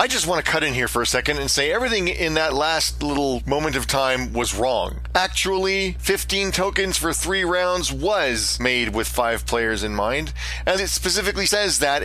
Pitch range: 115-185 Hz